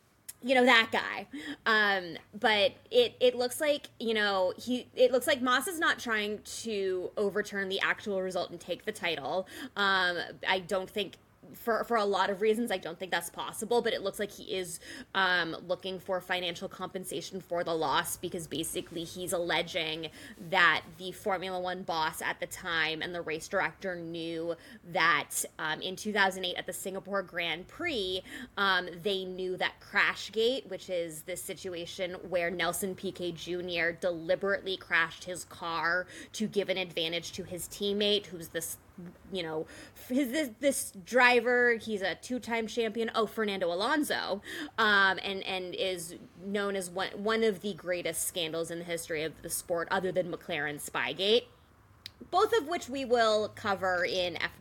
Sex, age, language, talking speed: female, 20-39, English, 165 wpm